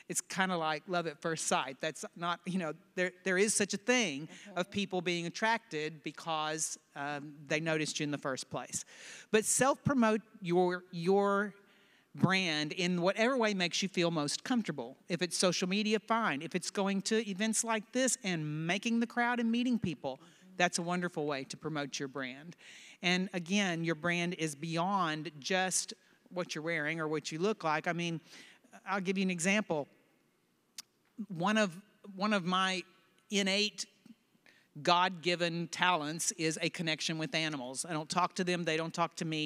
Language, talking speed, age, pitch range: English, 180 wpm, 50-69, 160-200 Hz